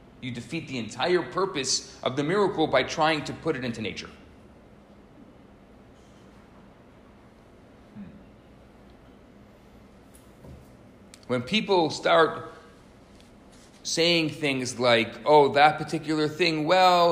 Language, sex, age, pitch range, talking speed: English, male, 40-59, 120-170 Hz, 90 wpm